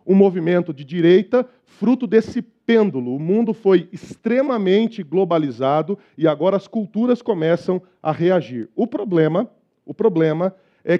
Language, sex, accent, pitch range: Portuguese, male, Brazilian, 165-215 Hz